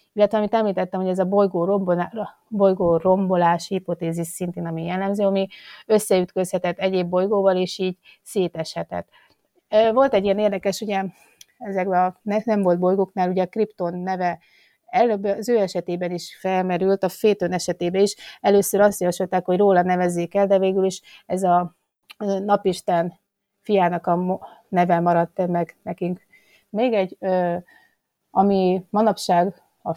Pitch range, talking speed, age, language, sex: 180-200 Hz, 140 wpm, 30-49, Hungarian, female